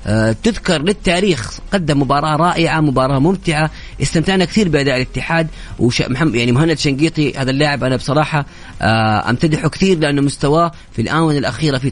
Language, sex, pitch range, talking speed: English, female, 130-170 Hz, 135 wpm